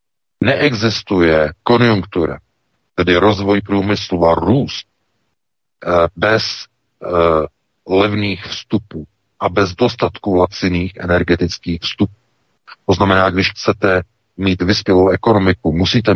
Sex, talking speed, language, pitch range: male, 90 wpm, Czech, 90-120 Hz